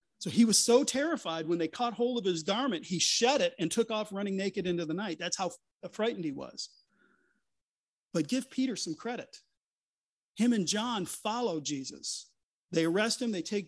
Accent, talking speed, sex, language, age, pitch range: American, 190 wpm, male, English, 40-59, 180-240 Hz